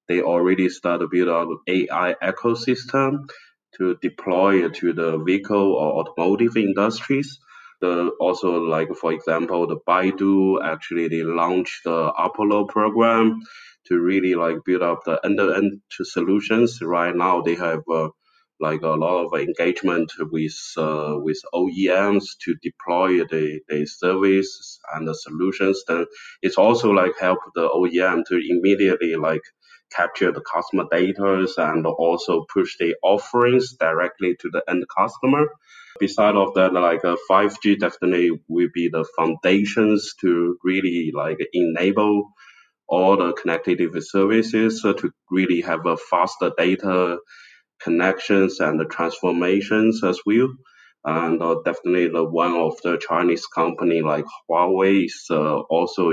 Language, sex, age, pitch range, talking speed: English, male, 20-39, 85-105 Hz, 140 wpm